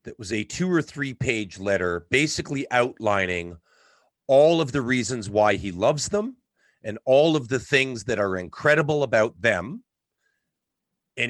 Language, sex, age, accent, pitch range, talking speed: English, male, 40-59, American, 100-140 Hz, 155 wpm